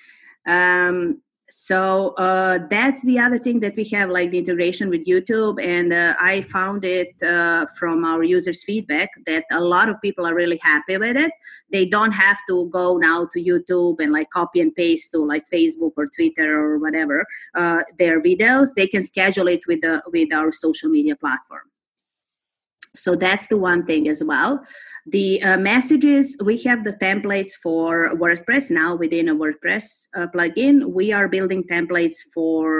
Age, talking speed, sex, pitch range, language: 30-49, 175 wpm, female, 170-240 Hz, English